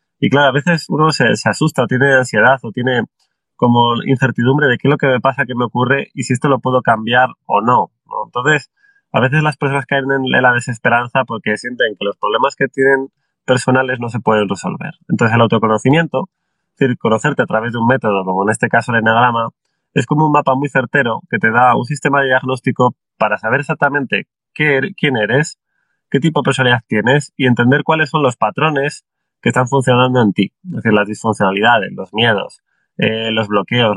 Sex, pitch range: male, 120-145 Hz